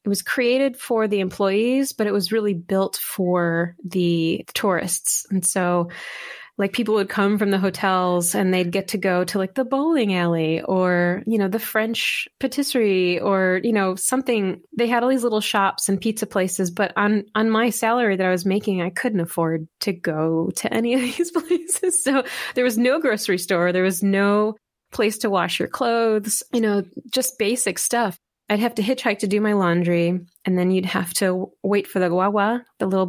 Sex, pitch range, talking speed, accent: female, 185-225 Hz, 200 wpm, American